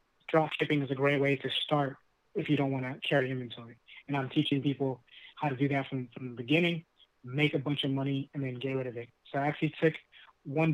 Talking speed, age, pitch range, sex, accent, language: 235 wpm, 20-39, 135-155 Hz, male, American, English